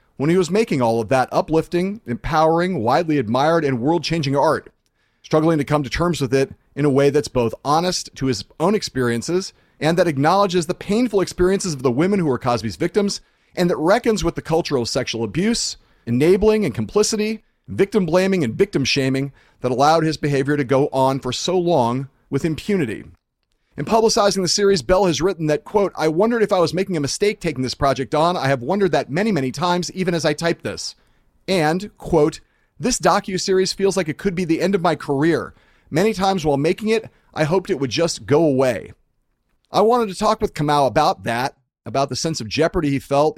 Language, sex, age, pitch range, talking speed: English, male, 40-59, 135-185 Hz, 200 wpm